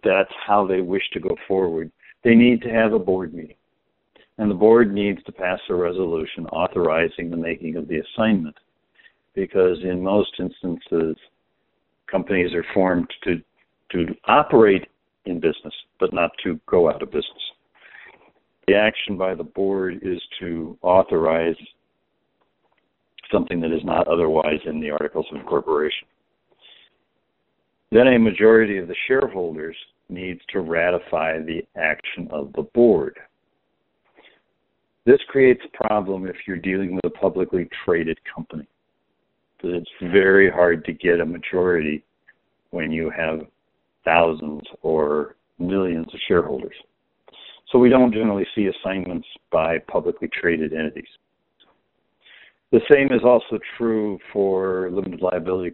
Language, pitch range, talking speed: English, 85-105 Hz, 135 wpm